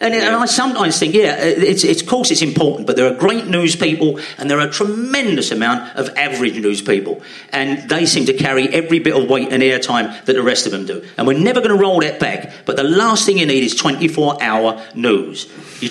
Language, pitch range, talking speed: English, 145-220 Hz, 240 wpm